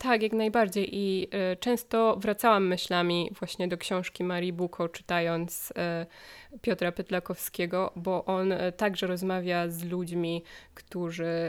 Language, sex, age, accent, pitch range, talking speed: Polish, female, 20-39, native, 175-200 Hz, 115 wpm